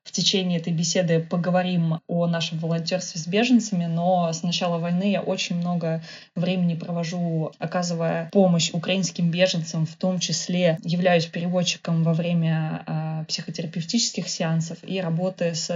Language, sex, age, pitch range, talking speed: Russian, female, 20-39, 170-200 Hz, 135 wpm